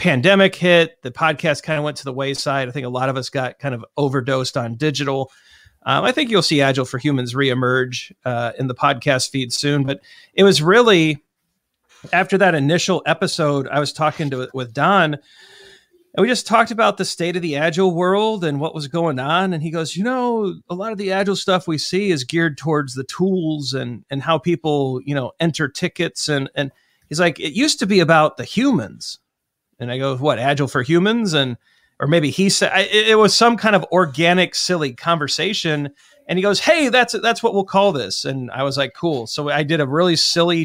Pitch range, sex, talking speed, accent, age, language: 140-185 Hz, male, 215 wpm, American, 40-59, English